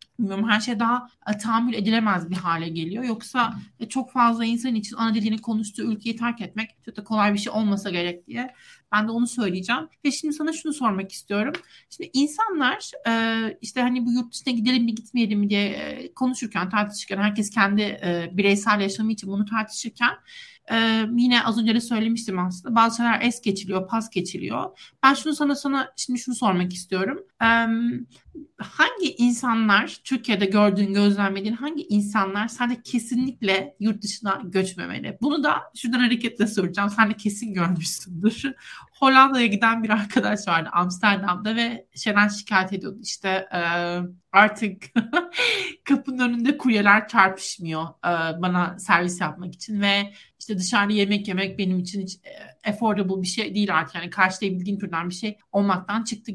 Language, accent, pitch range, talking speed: Turkish, native, 195-240 Hz, 155 wpm